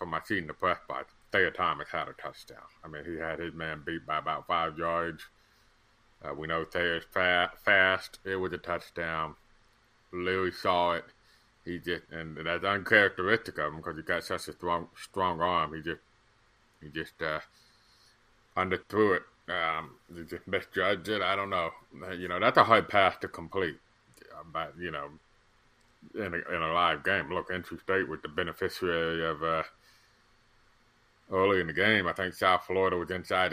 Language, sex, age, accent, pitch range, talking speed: English, male, 30-49, American, 85-110 Hz, 180 wpm